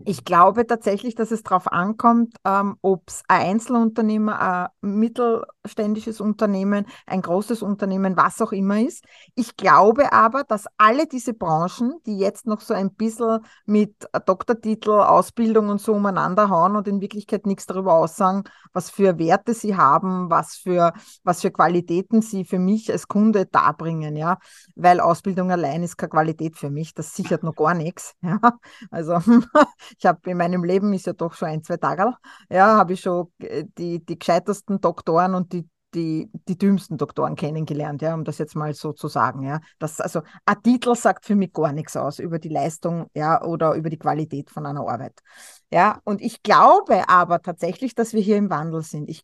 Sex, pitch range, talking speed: female, 170-215 Hz, 185 wpm